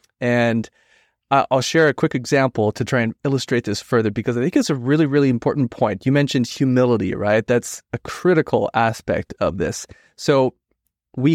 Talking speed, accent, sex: 180 wpm, American, male